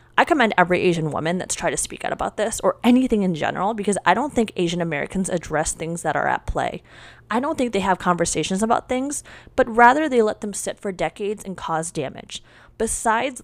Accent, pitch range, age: American, 165-235 Hz, 20-39